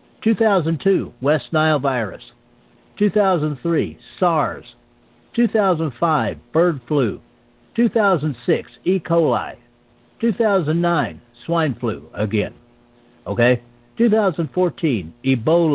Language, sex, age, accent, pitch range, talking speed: English, male, 60-79, American, 120-175 Hz, 70 wpm